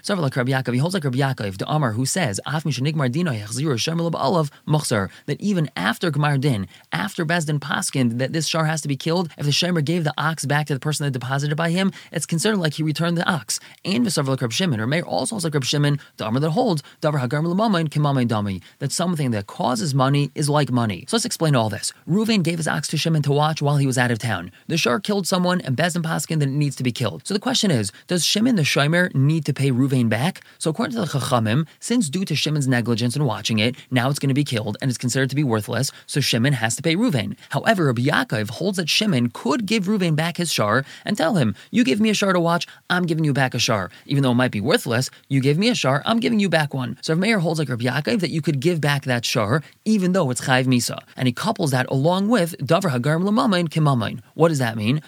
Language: English